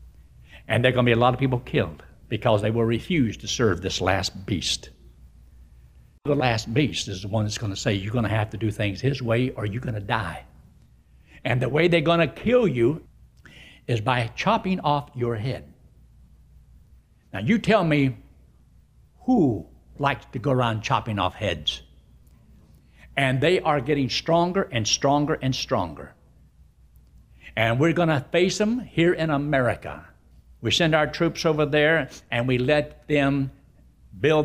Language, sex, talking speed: English, male, 170 wpm